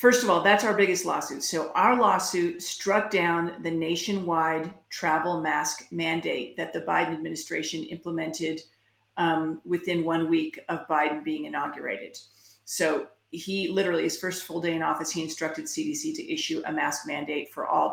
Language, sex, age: English, female, 40-59